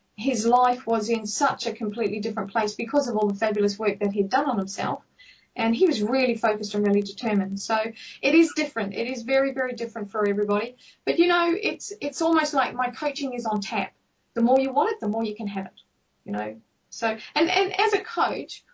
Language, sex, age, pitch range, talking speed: English, female, 40-59, 210-270 Hz, 225 wpm